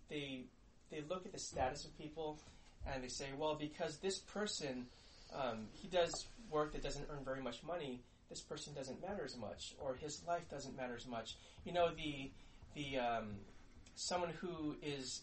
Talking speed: 180 wpm